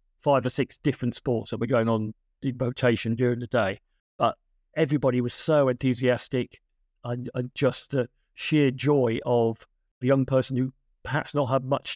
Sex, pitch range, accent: male, 115-135 Hz, British